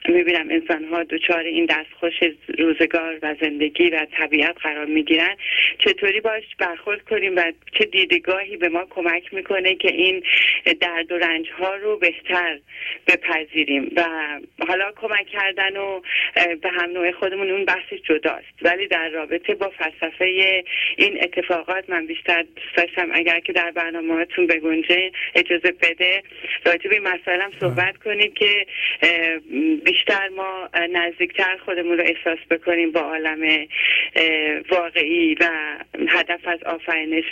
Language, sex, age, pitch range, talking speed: Persian, female, 30-49, 165-200 Hz, 135 wpm